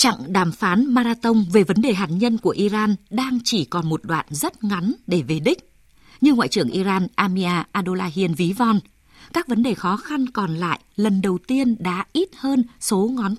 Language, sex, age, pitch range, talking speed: Vietnamese, female, 20-39, 180-240 Hz, 200 wpm